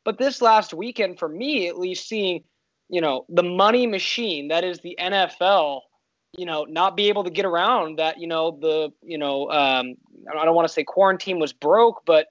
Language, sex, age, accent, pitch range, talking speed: English, male, 20-39, American, 155-195 Hz, 205 wpm